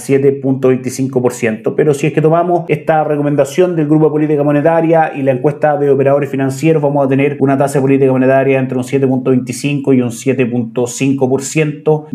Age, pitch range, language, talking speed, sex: 30-49, 130-150 Hz, Spanish, 165 wpm, male